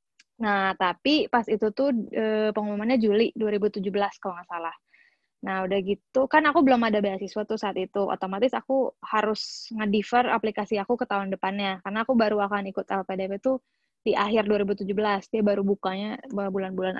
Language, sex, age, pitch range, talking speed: Indonesian, female, 20-39, 200-235 Hz, 160 wpm